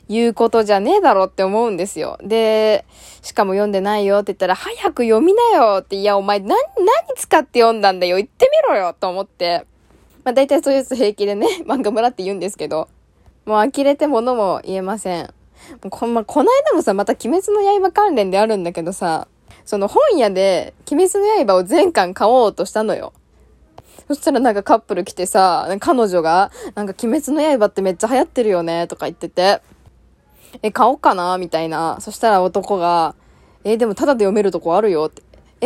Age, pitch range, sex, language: 10-29, 190-315 Hz, female, Japanese